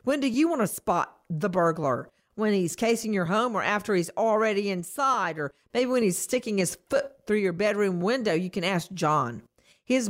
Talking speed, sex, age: 200 wpm, female, 50-69